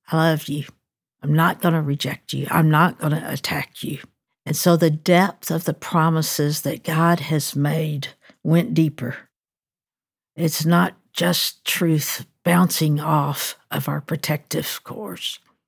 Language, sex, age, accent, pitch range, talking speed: English, female, 60-79, American, 150-180 Hz, 145 wpm